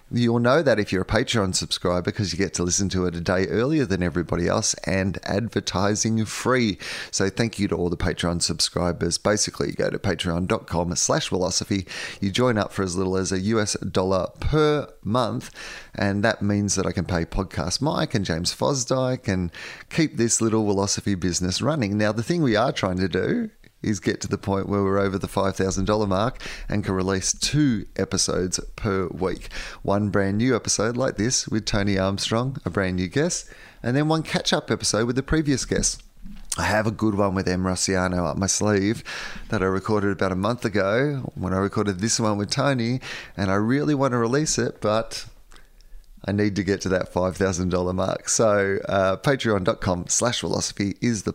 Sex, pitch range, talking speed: male, 95-115 Hz, 195 wpm